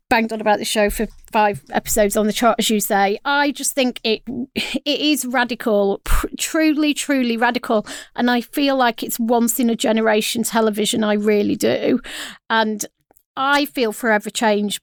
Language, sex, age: English, female, 40-59